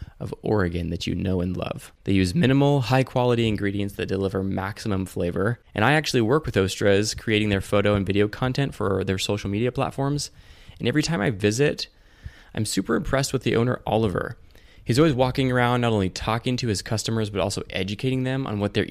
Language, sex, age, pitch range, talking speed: English, male, 20-39, 95-120 Hz, 195 wpm